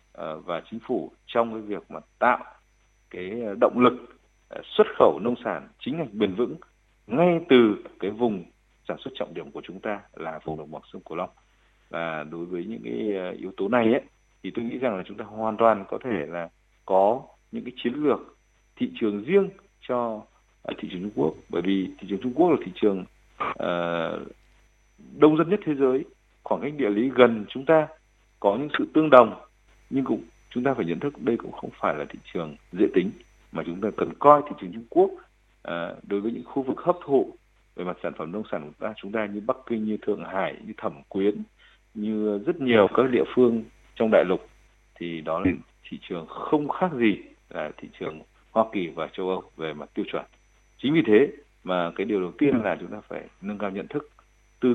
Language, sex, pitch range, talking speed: Vietnamese, male, 95-130 Hz, 215 wpm